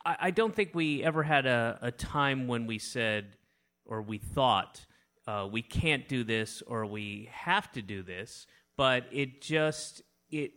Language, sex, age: English, male, 30-49